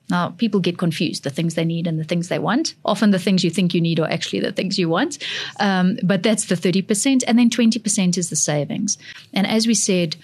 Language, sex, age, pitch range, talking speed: English, female, 30-49, 170-210 Hz, 240 wpm